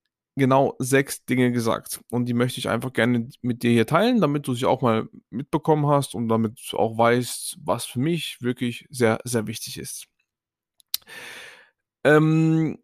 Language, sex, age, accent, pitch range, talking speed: German, male, 10-29, German, 115-135 Hz, 165 wpm